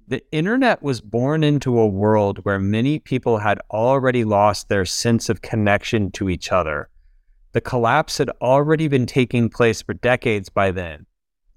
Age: 30-49